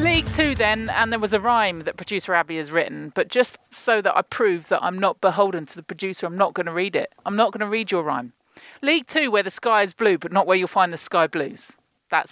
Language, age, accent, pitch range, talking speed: English, 40-59, British, 170-240 Hz, 270 wpm